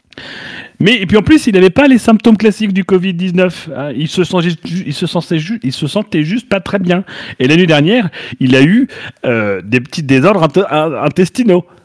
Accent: French